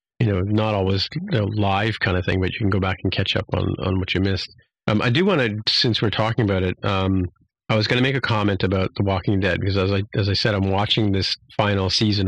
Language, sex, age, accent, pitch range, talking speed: English, male, 40-59, American, 95-115 Hz, 280 wpm